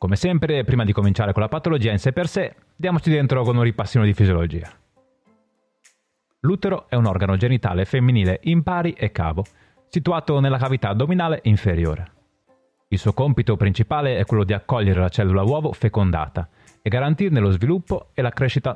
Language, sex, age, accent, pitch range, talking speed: Italian, male, 30-49, native, 100-145 Hz, 170 wpm